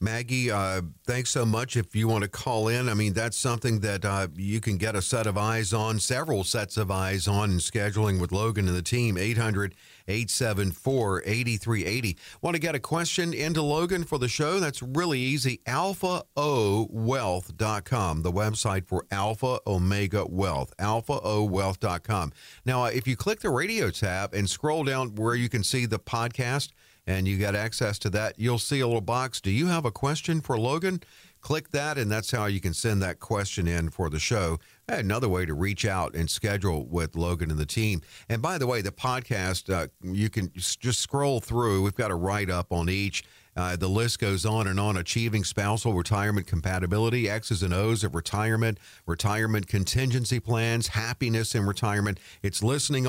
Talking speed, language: 185 wpm, English